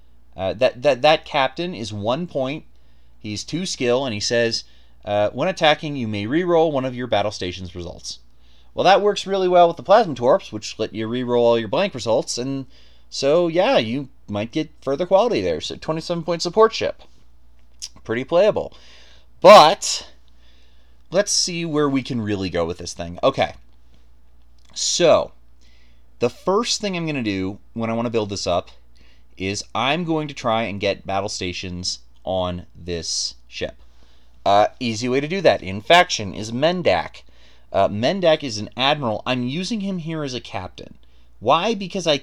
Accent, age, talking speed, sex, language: American, 30-49, 175 wpm, male, English